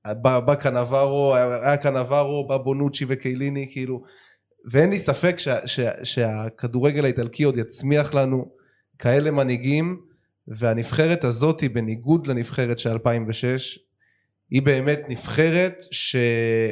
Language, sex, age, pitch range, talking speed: Hebrew, male, 20-39, 120-150 Hz, 110 wpm